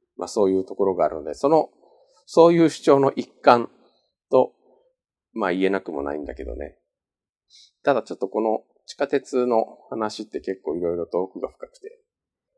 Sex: male